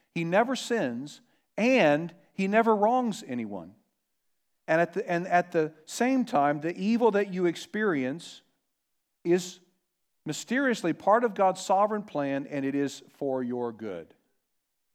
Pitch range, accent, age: 120-170 Hz, American, 50-69